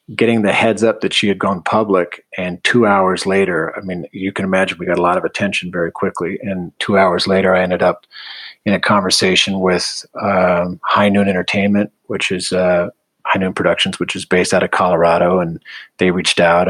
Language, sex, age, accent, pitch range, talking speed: English, male, 30-49, American, 90-100 Hz, 205 wpm